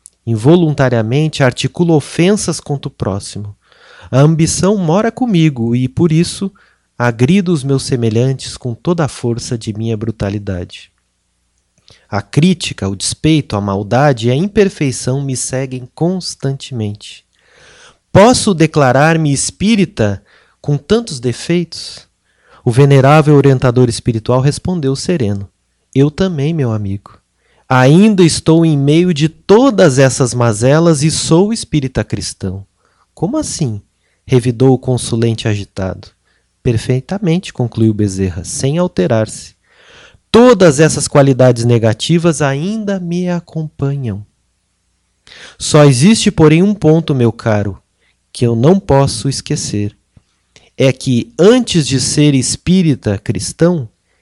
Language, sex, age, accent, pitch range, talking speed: Portuguese, male, 30-49, Brazilian, 115-165 Hz, 110 wpm